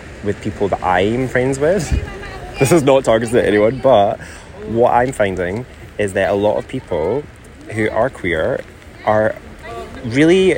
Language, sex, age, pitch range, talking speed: English, male, 20-39, 95-115 Hz, 155 wpm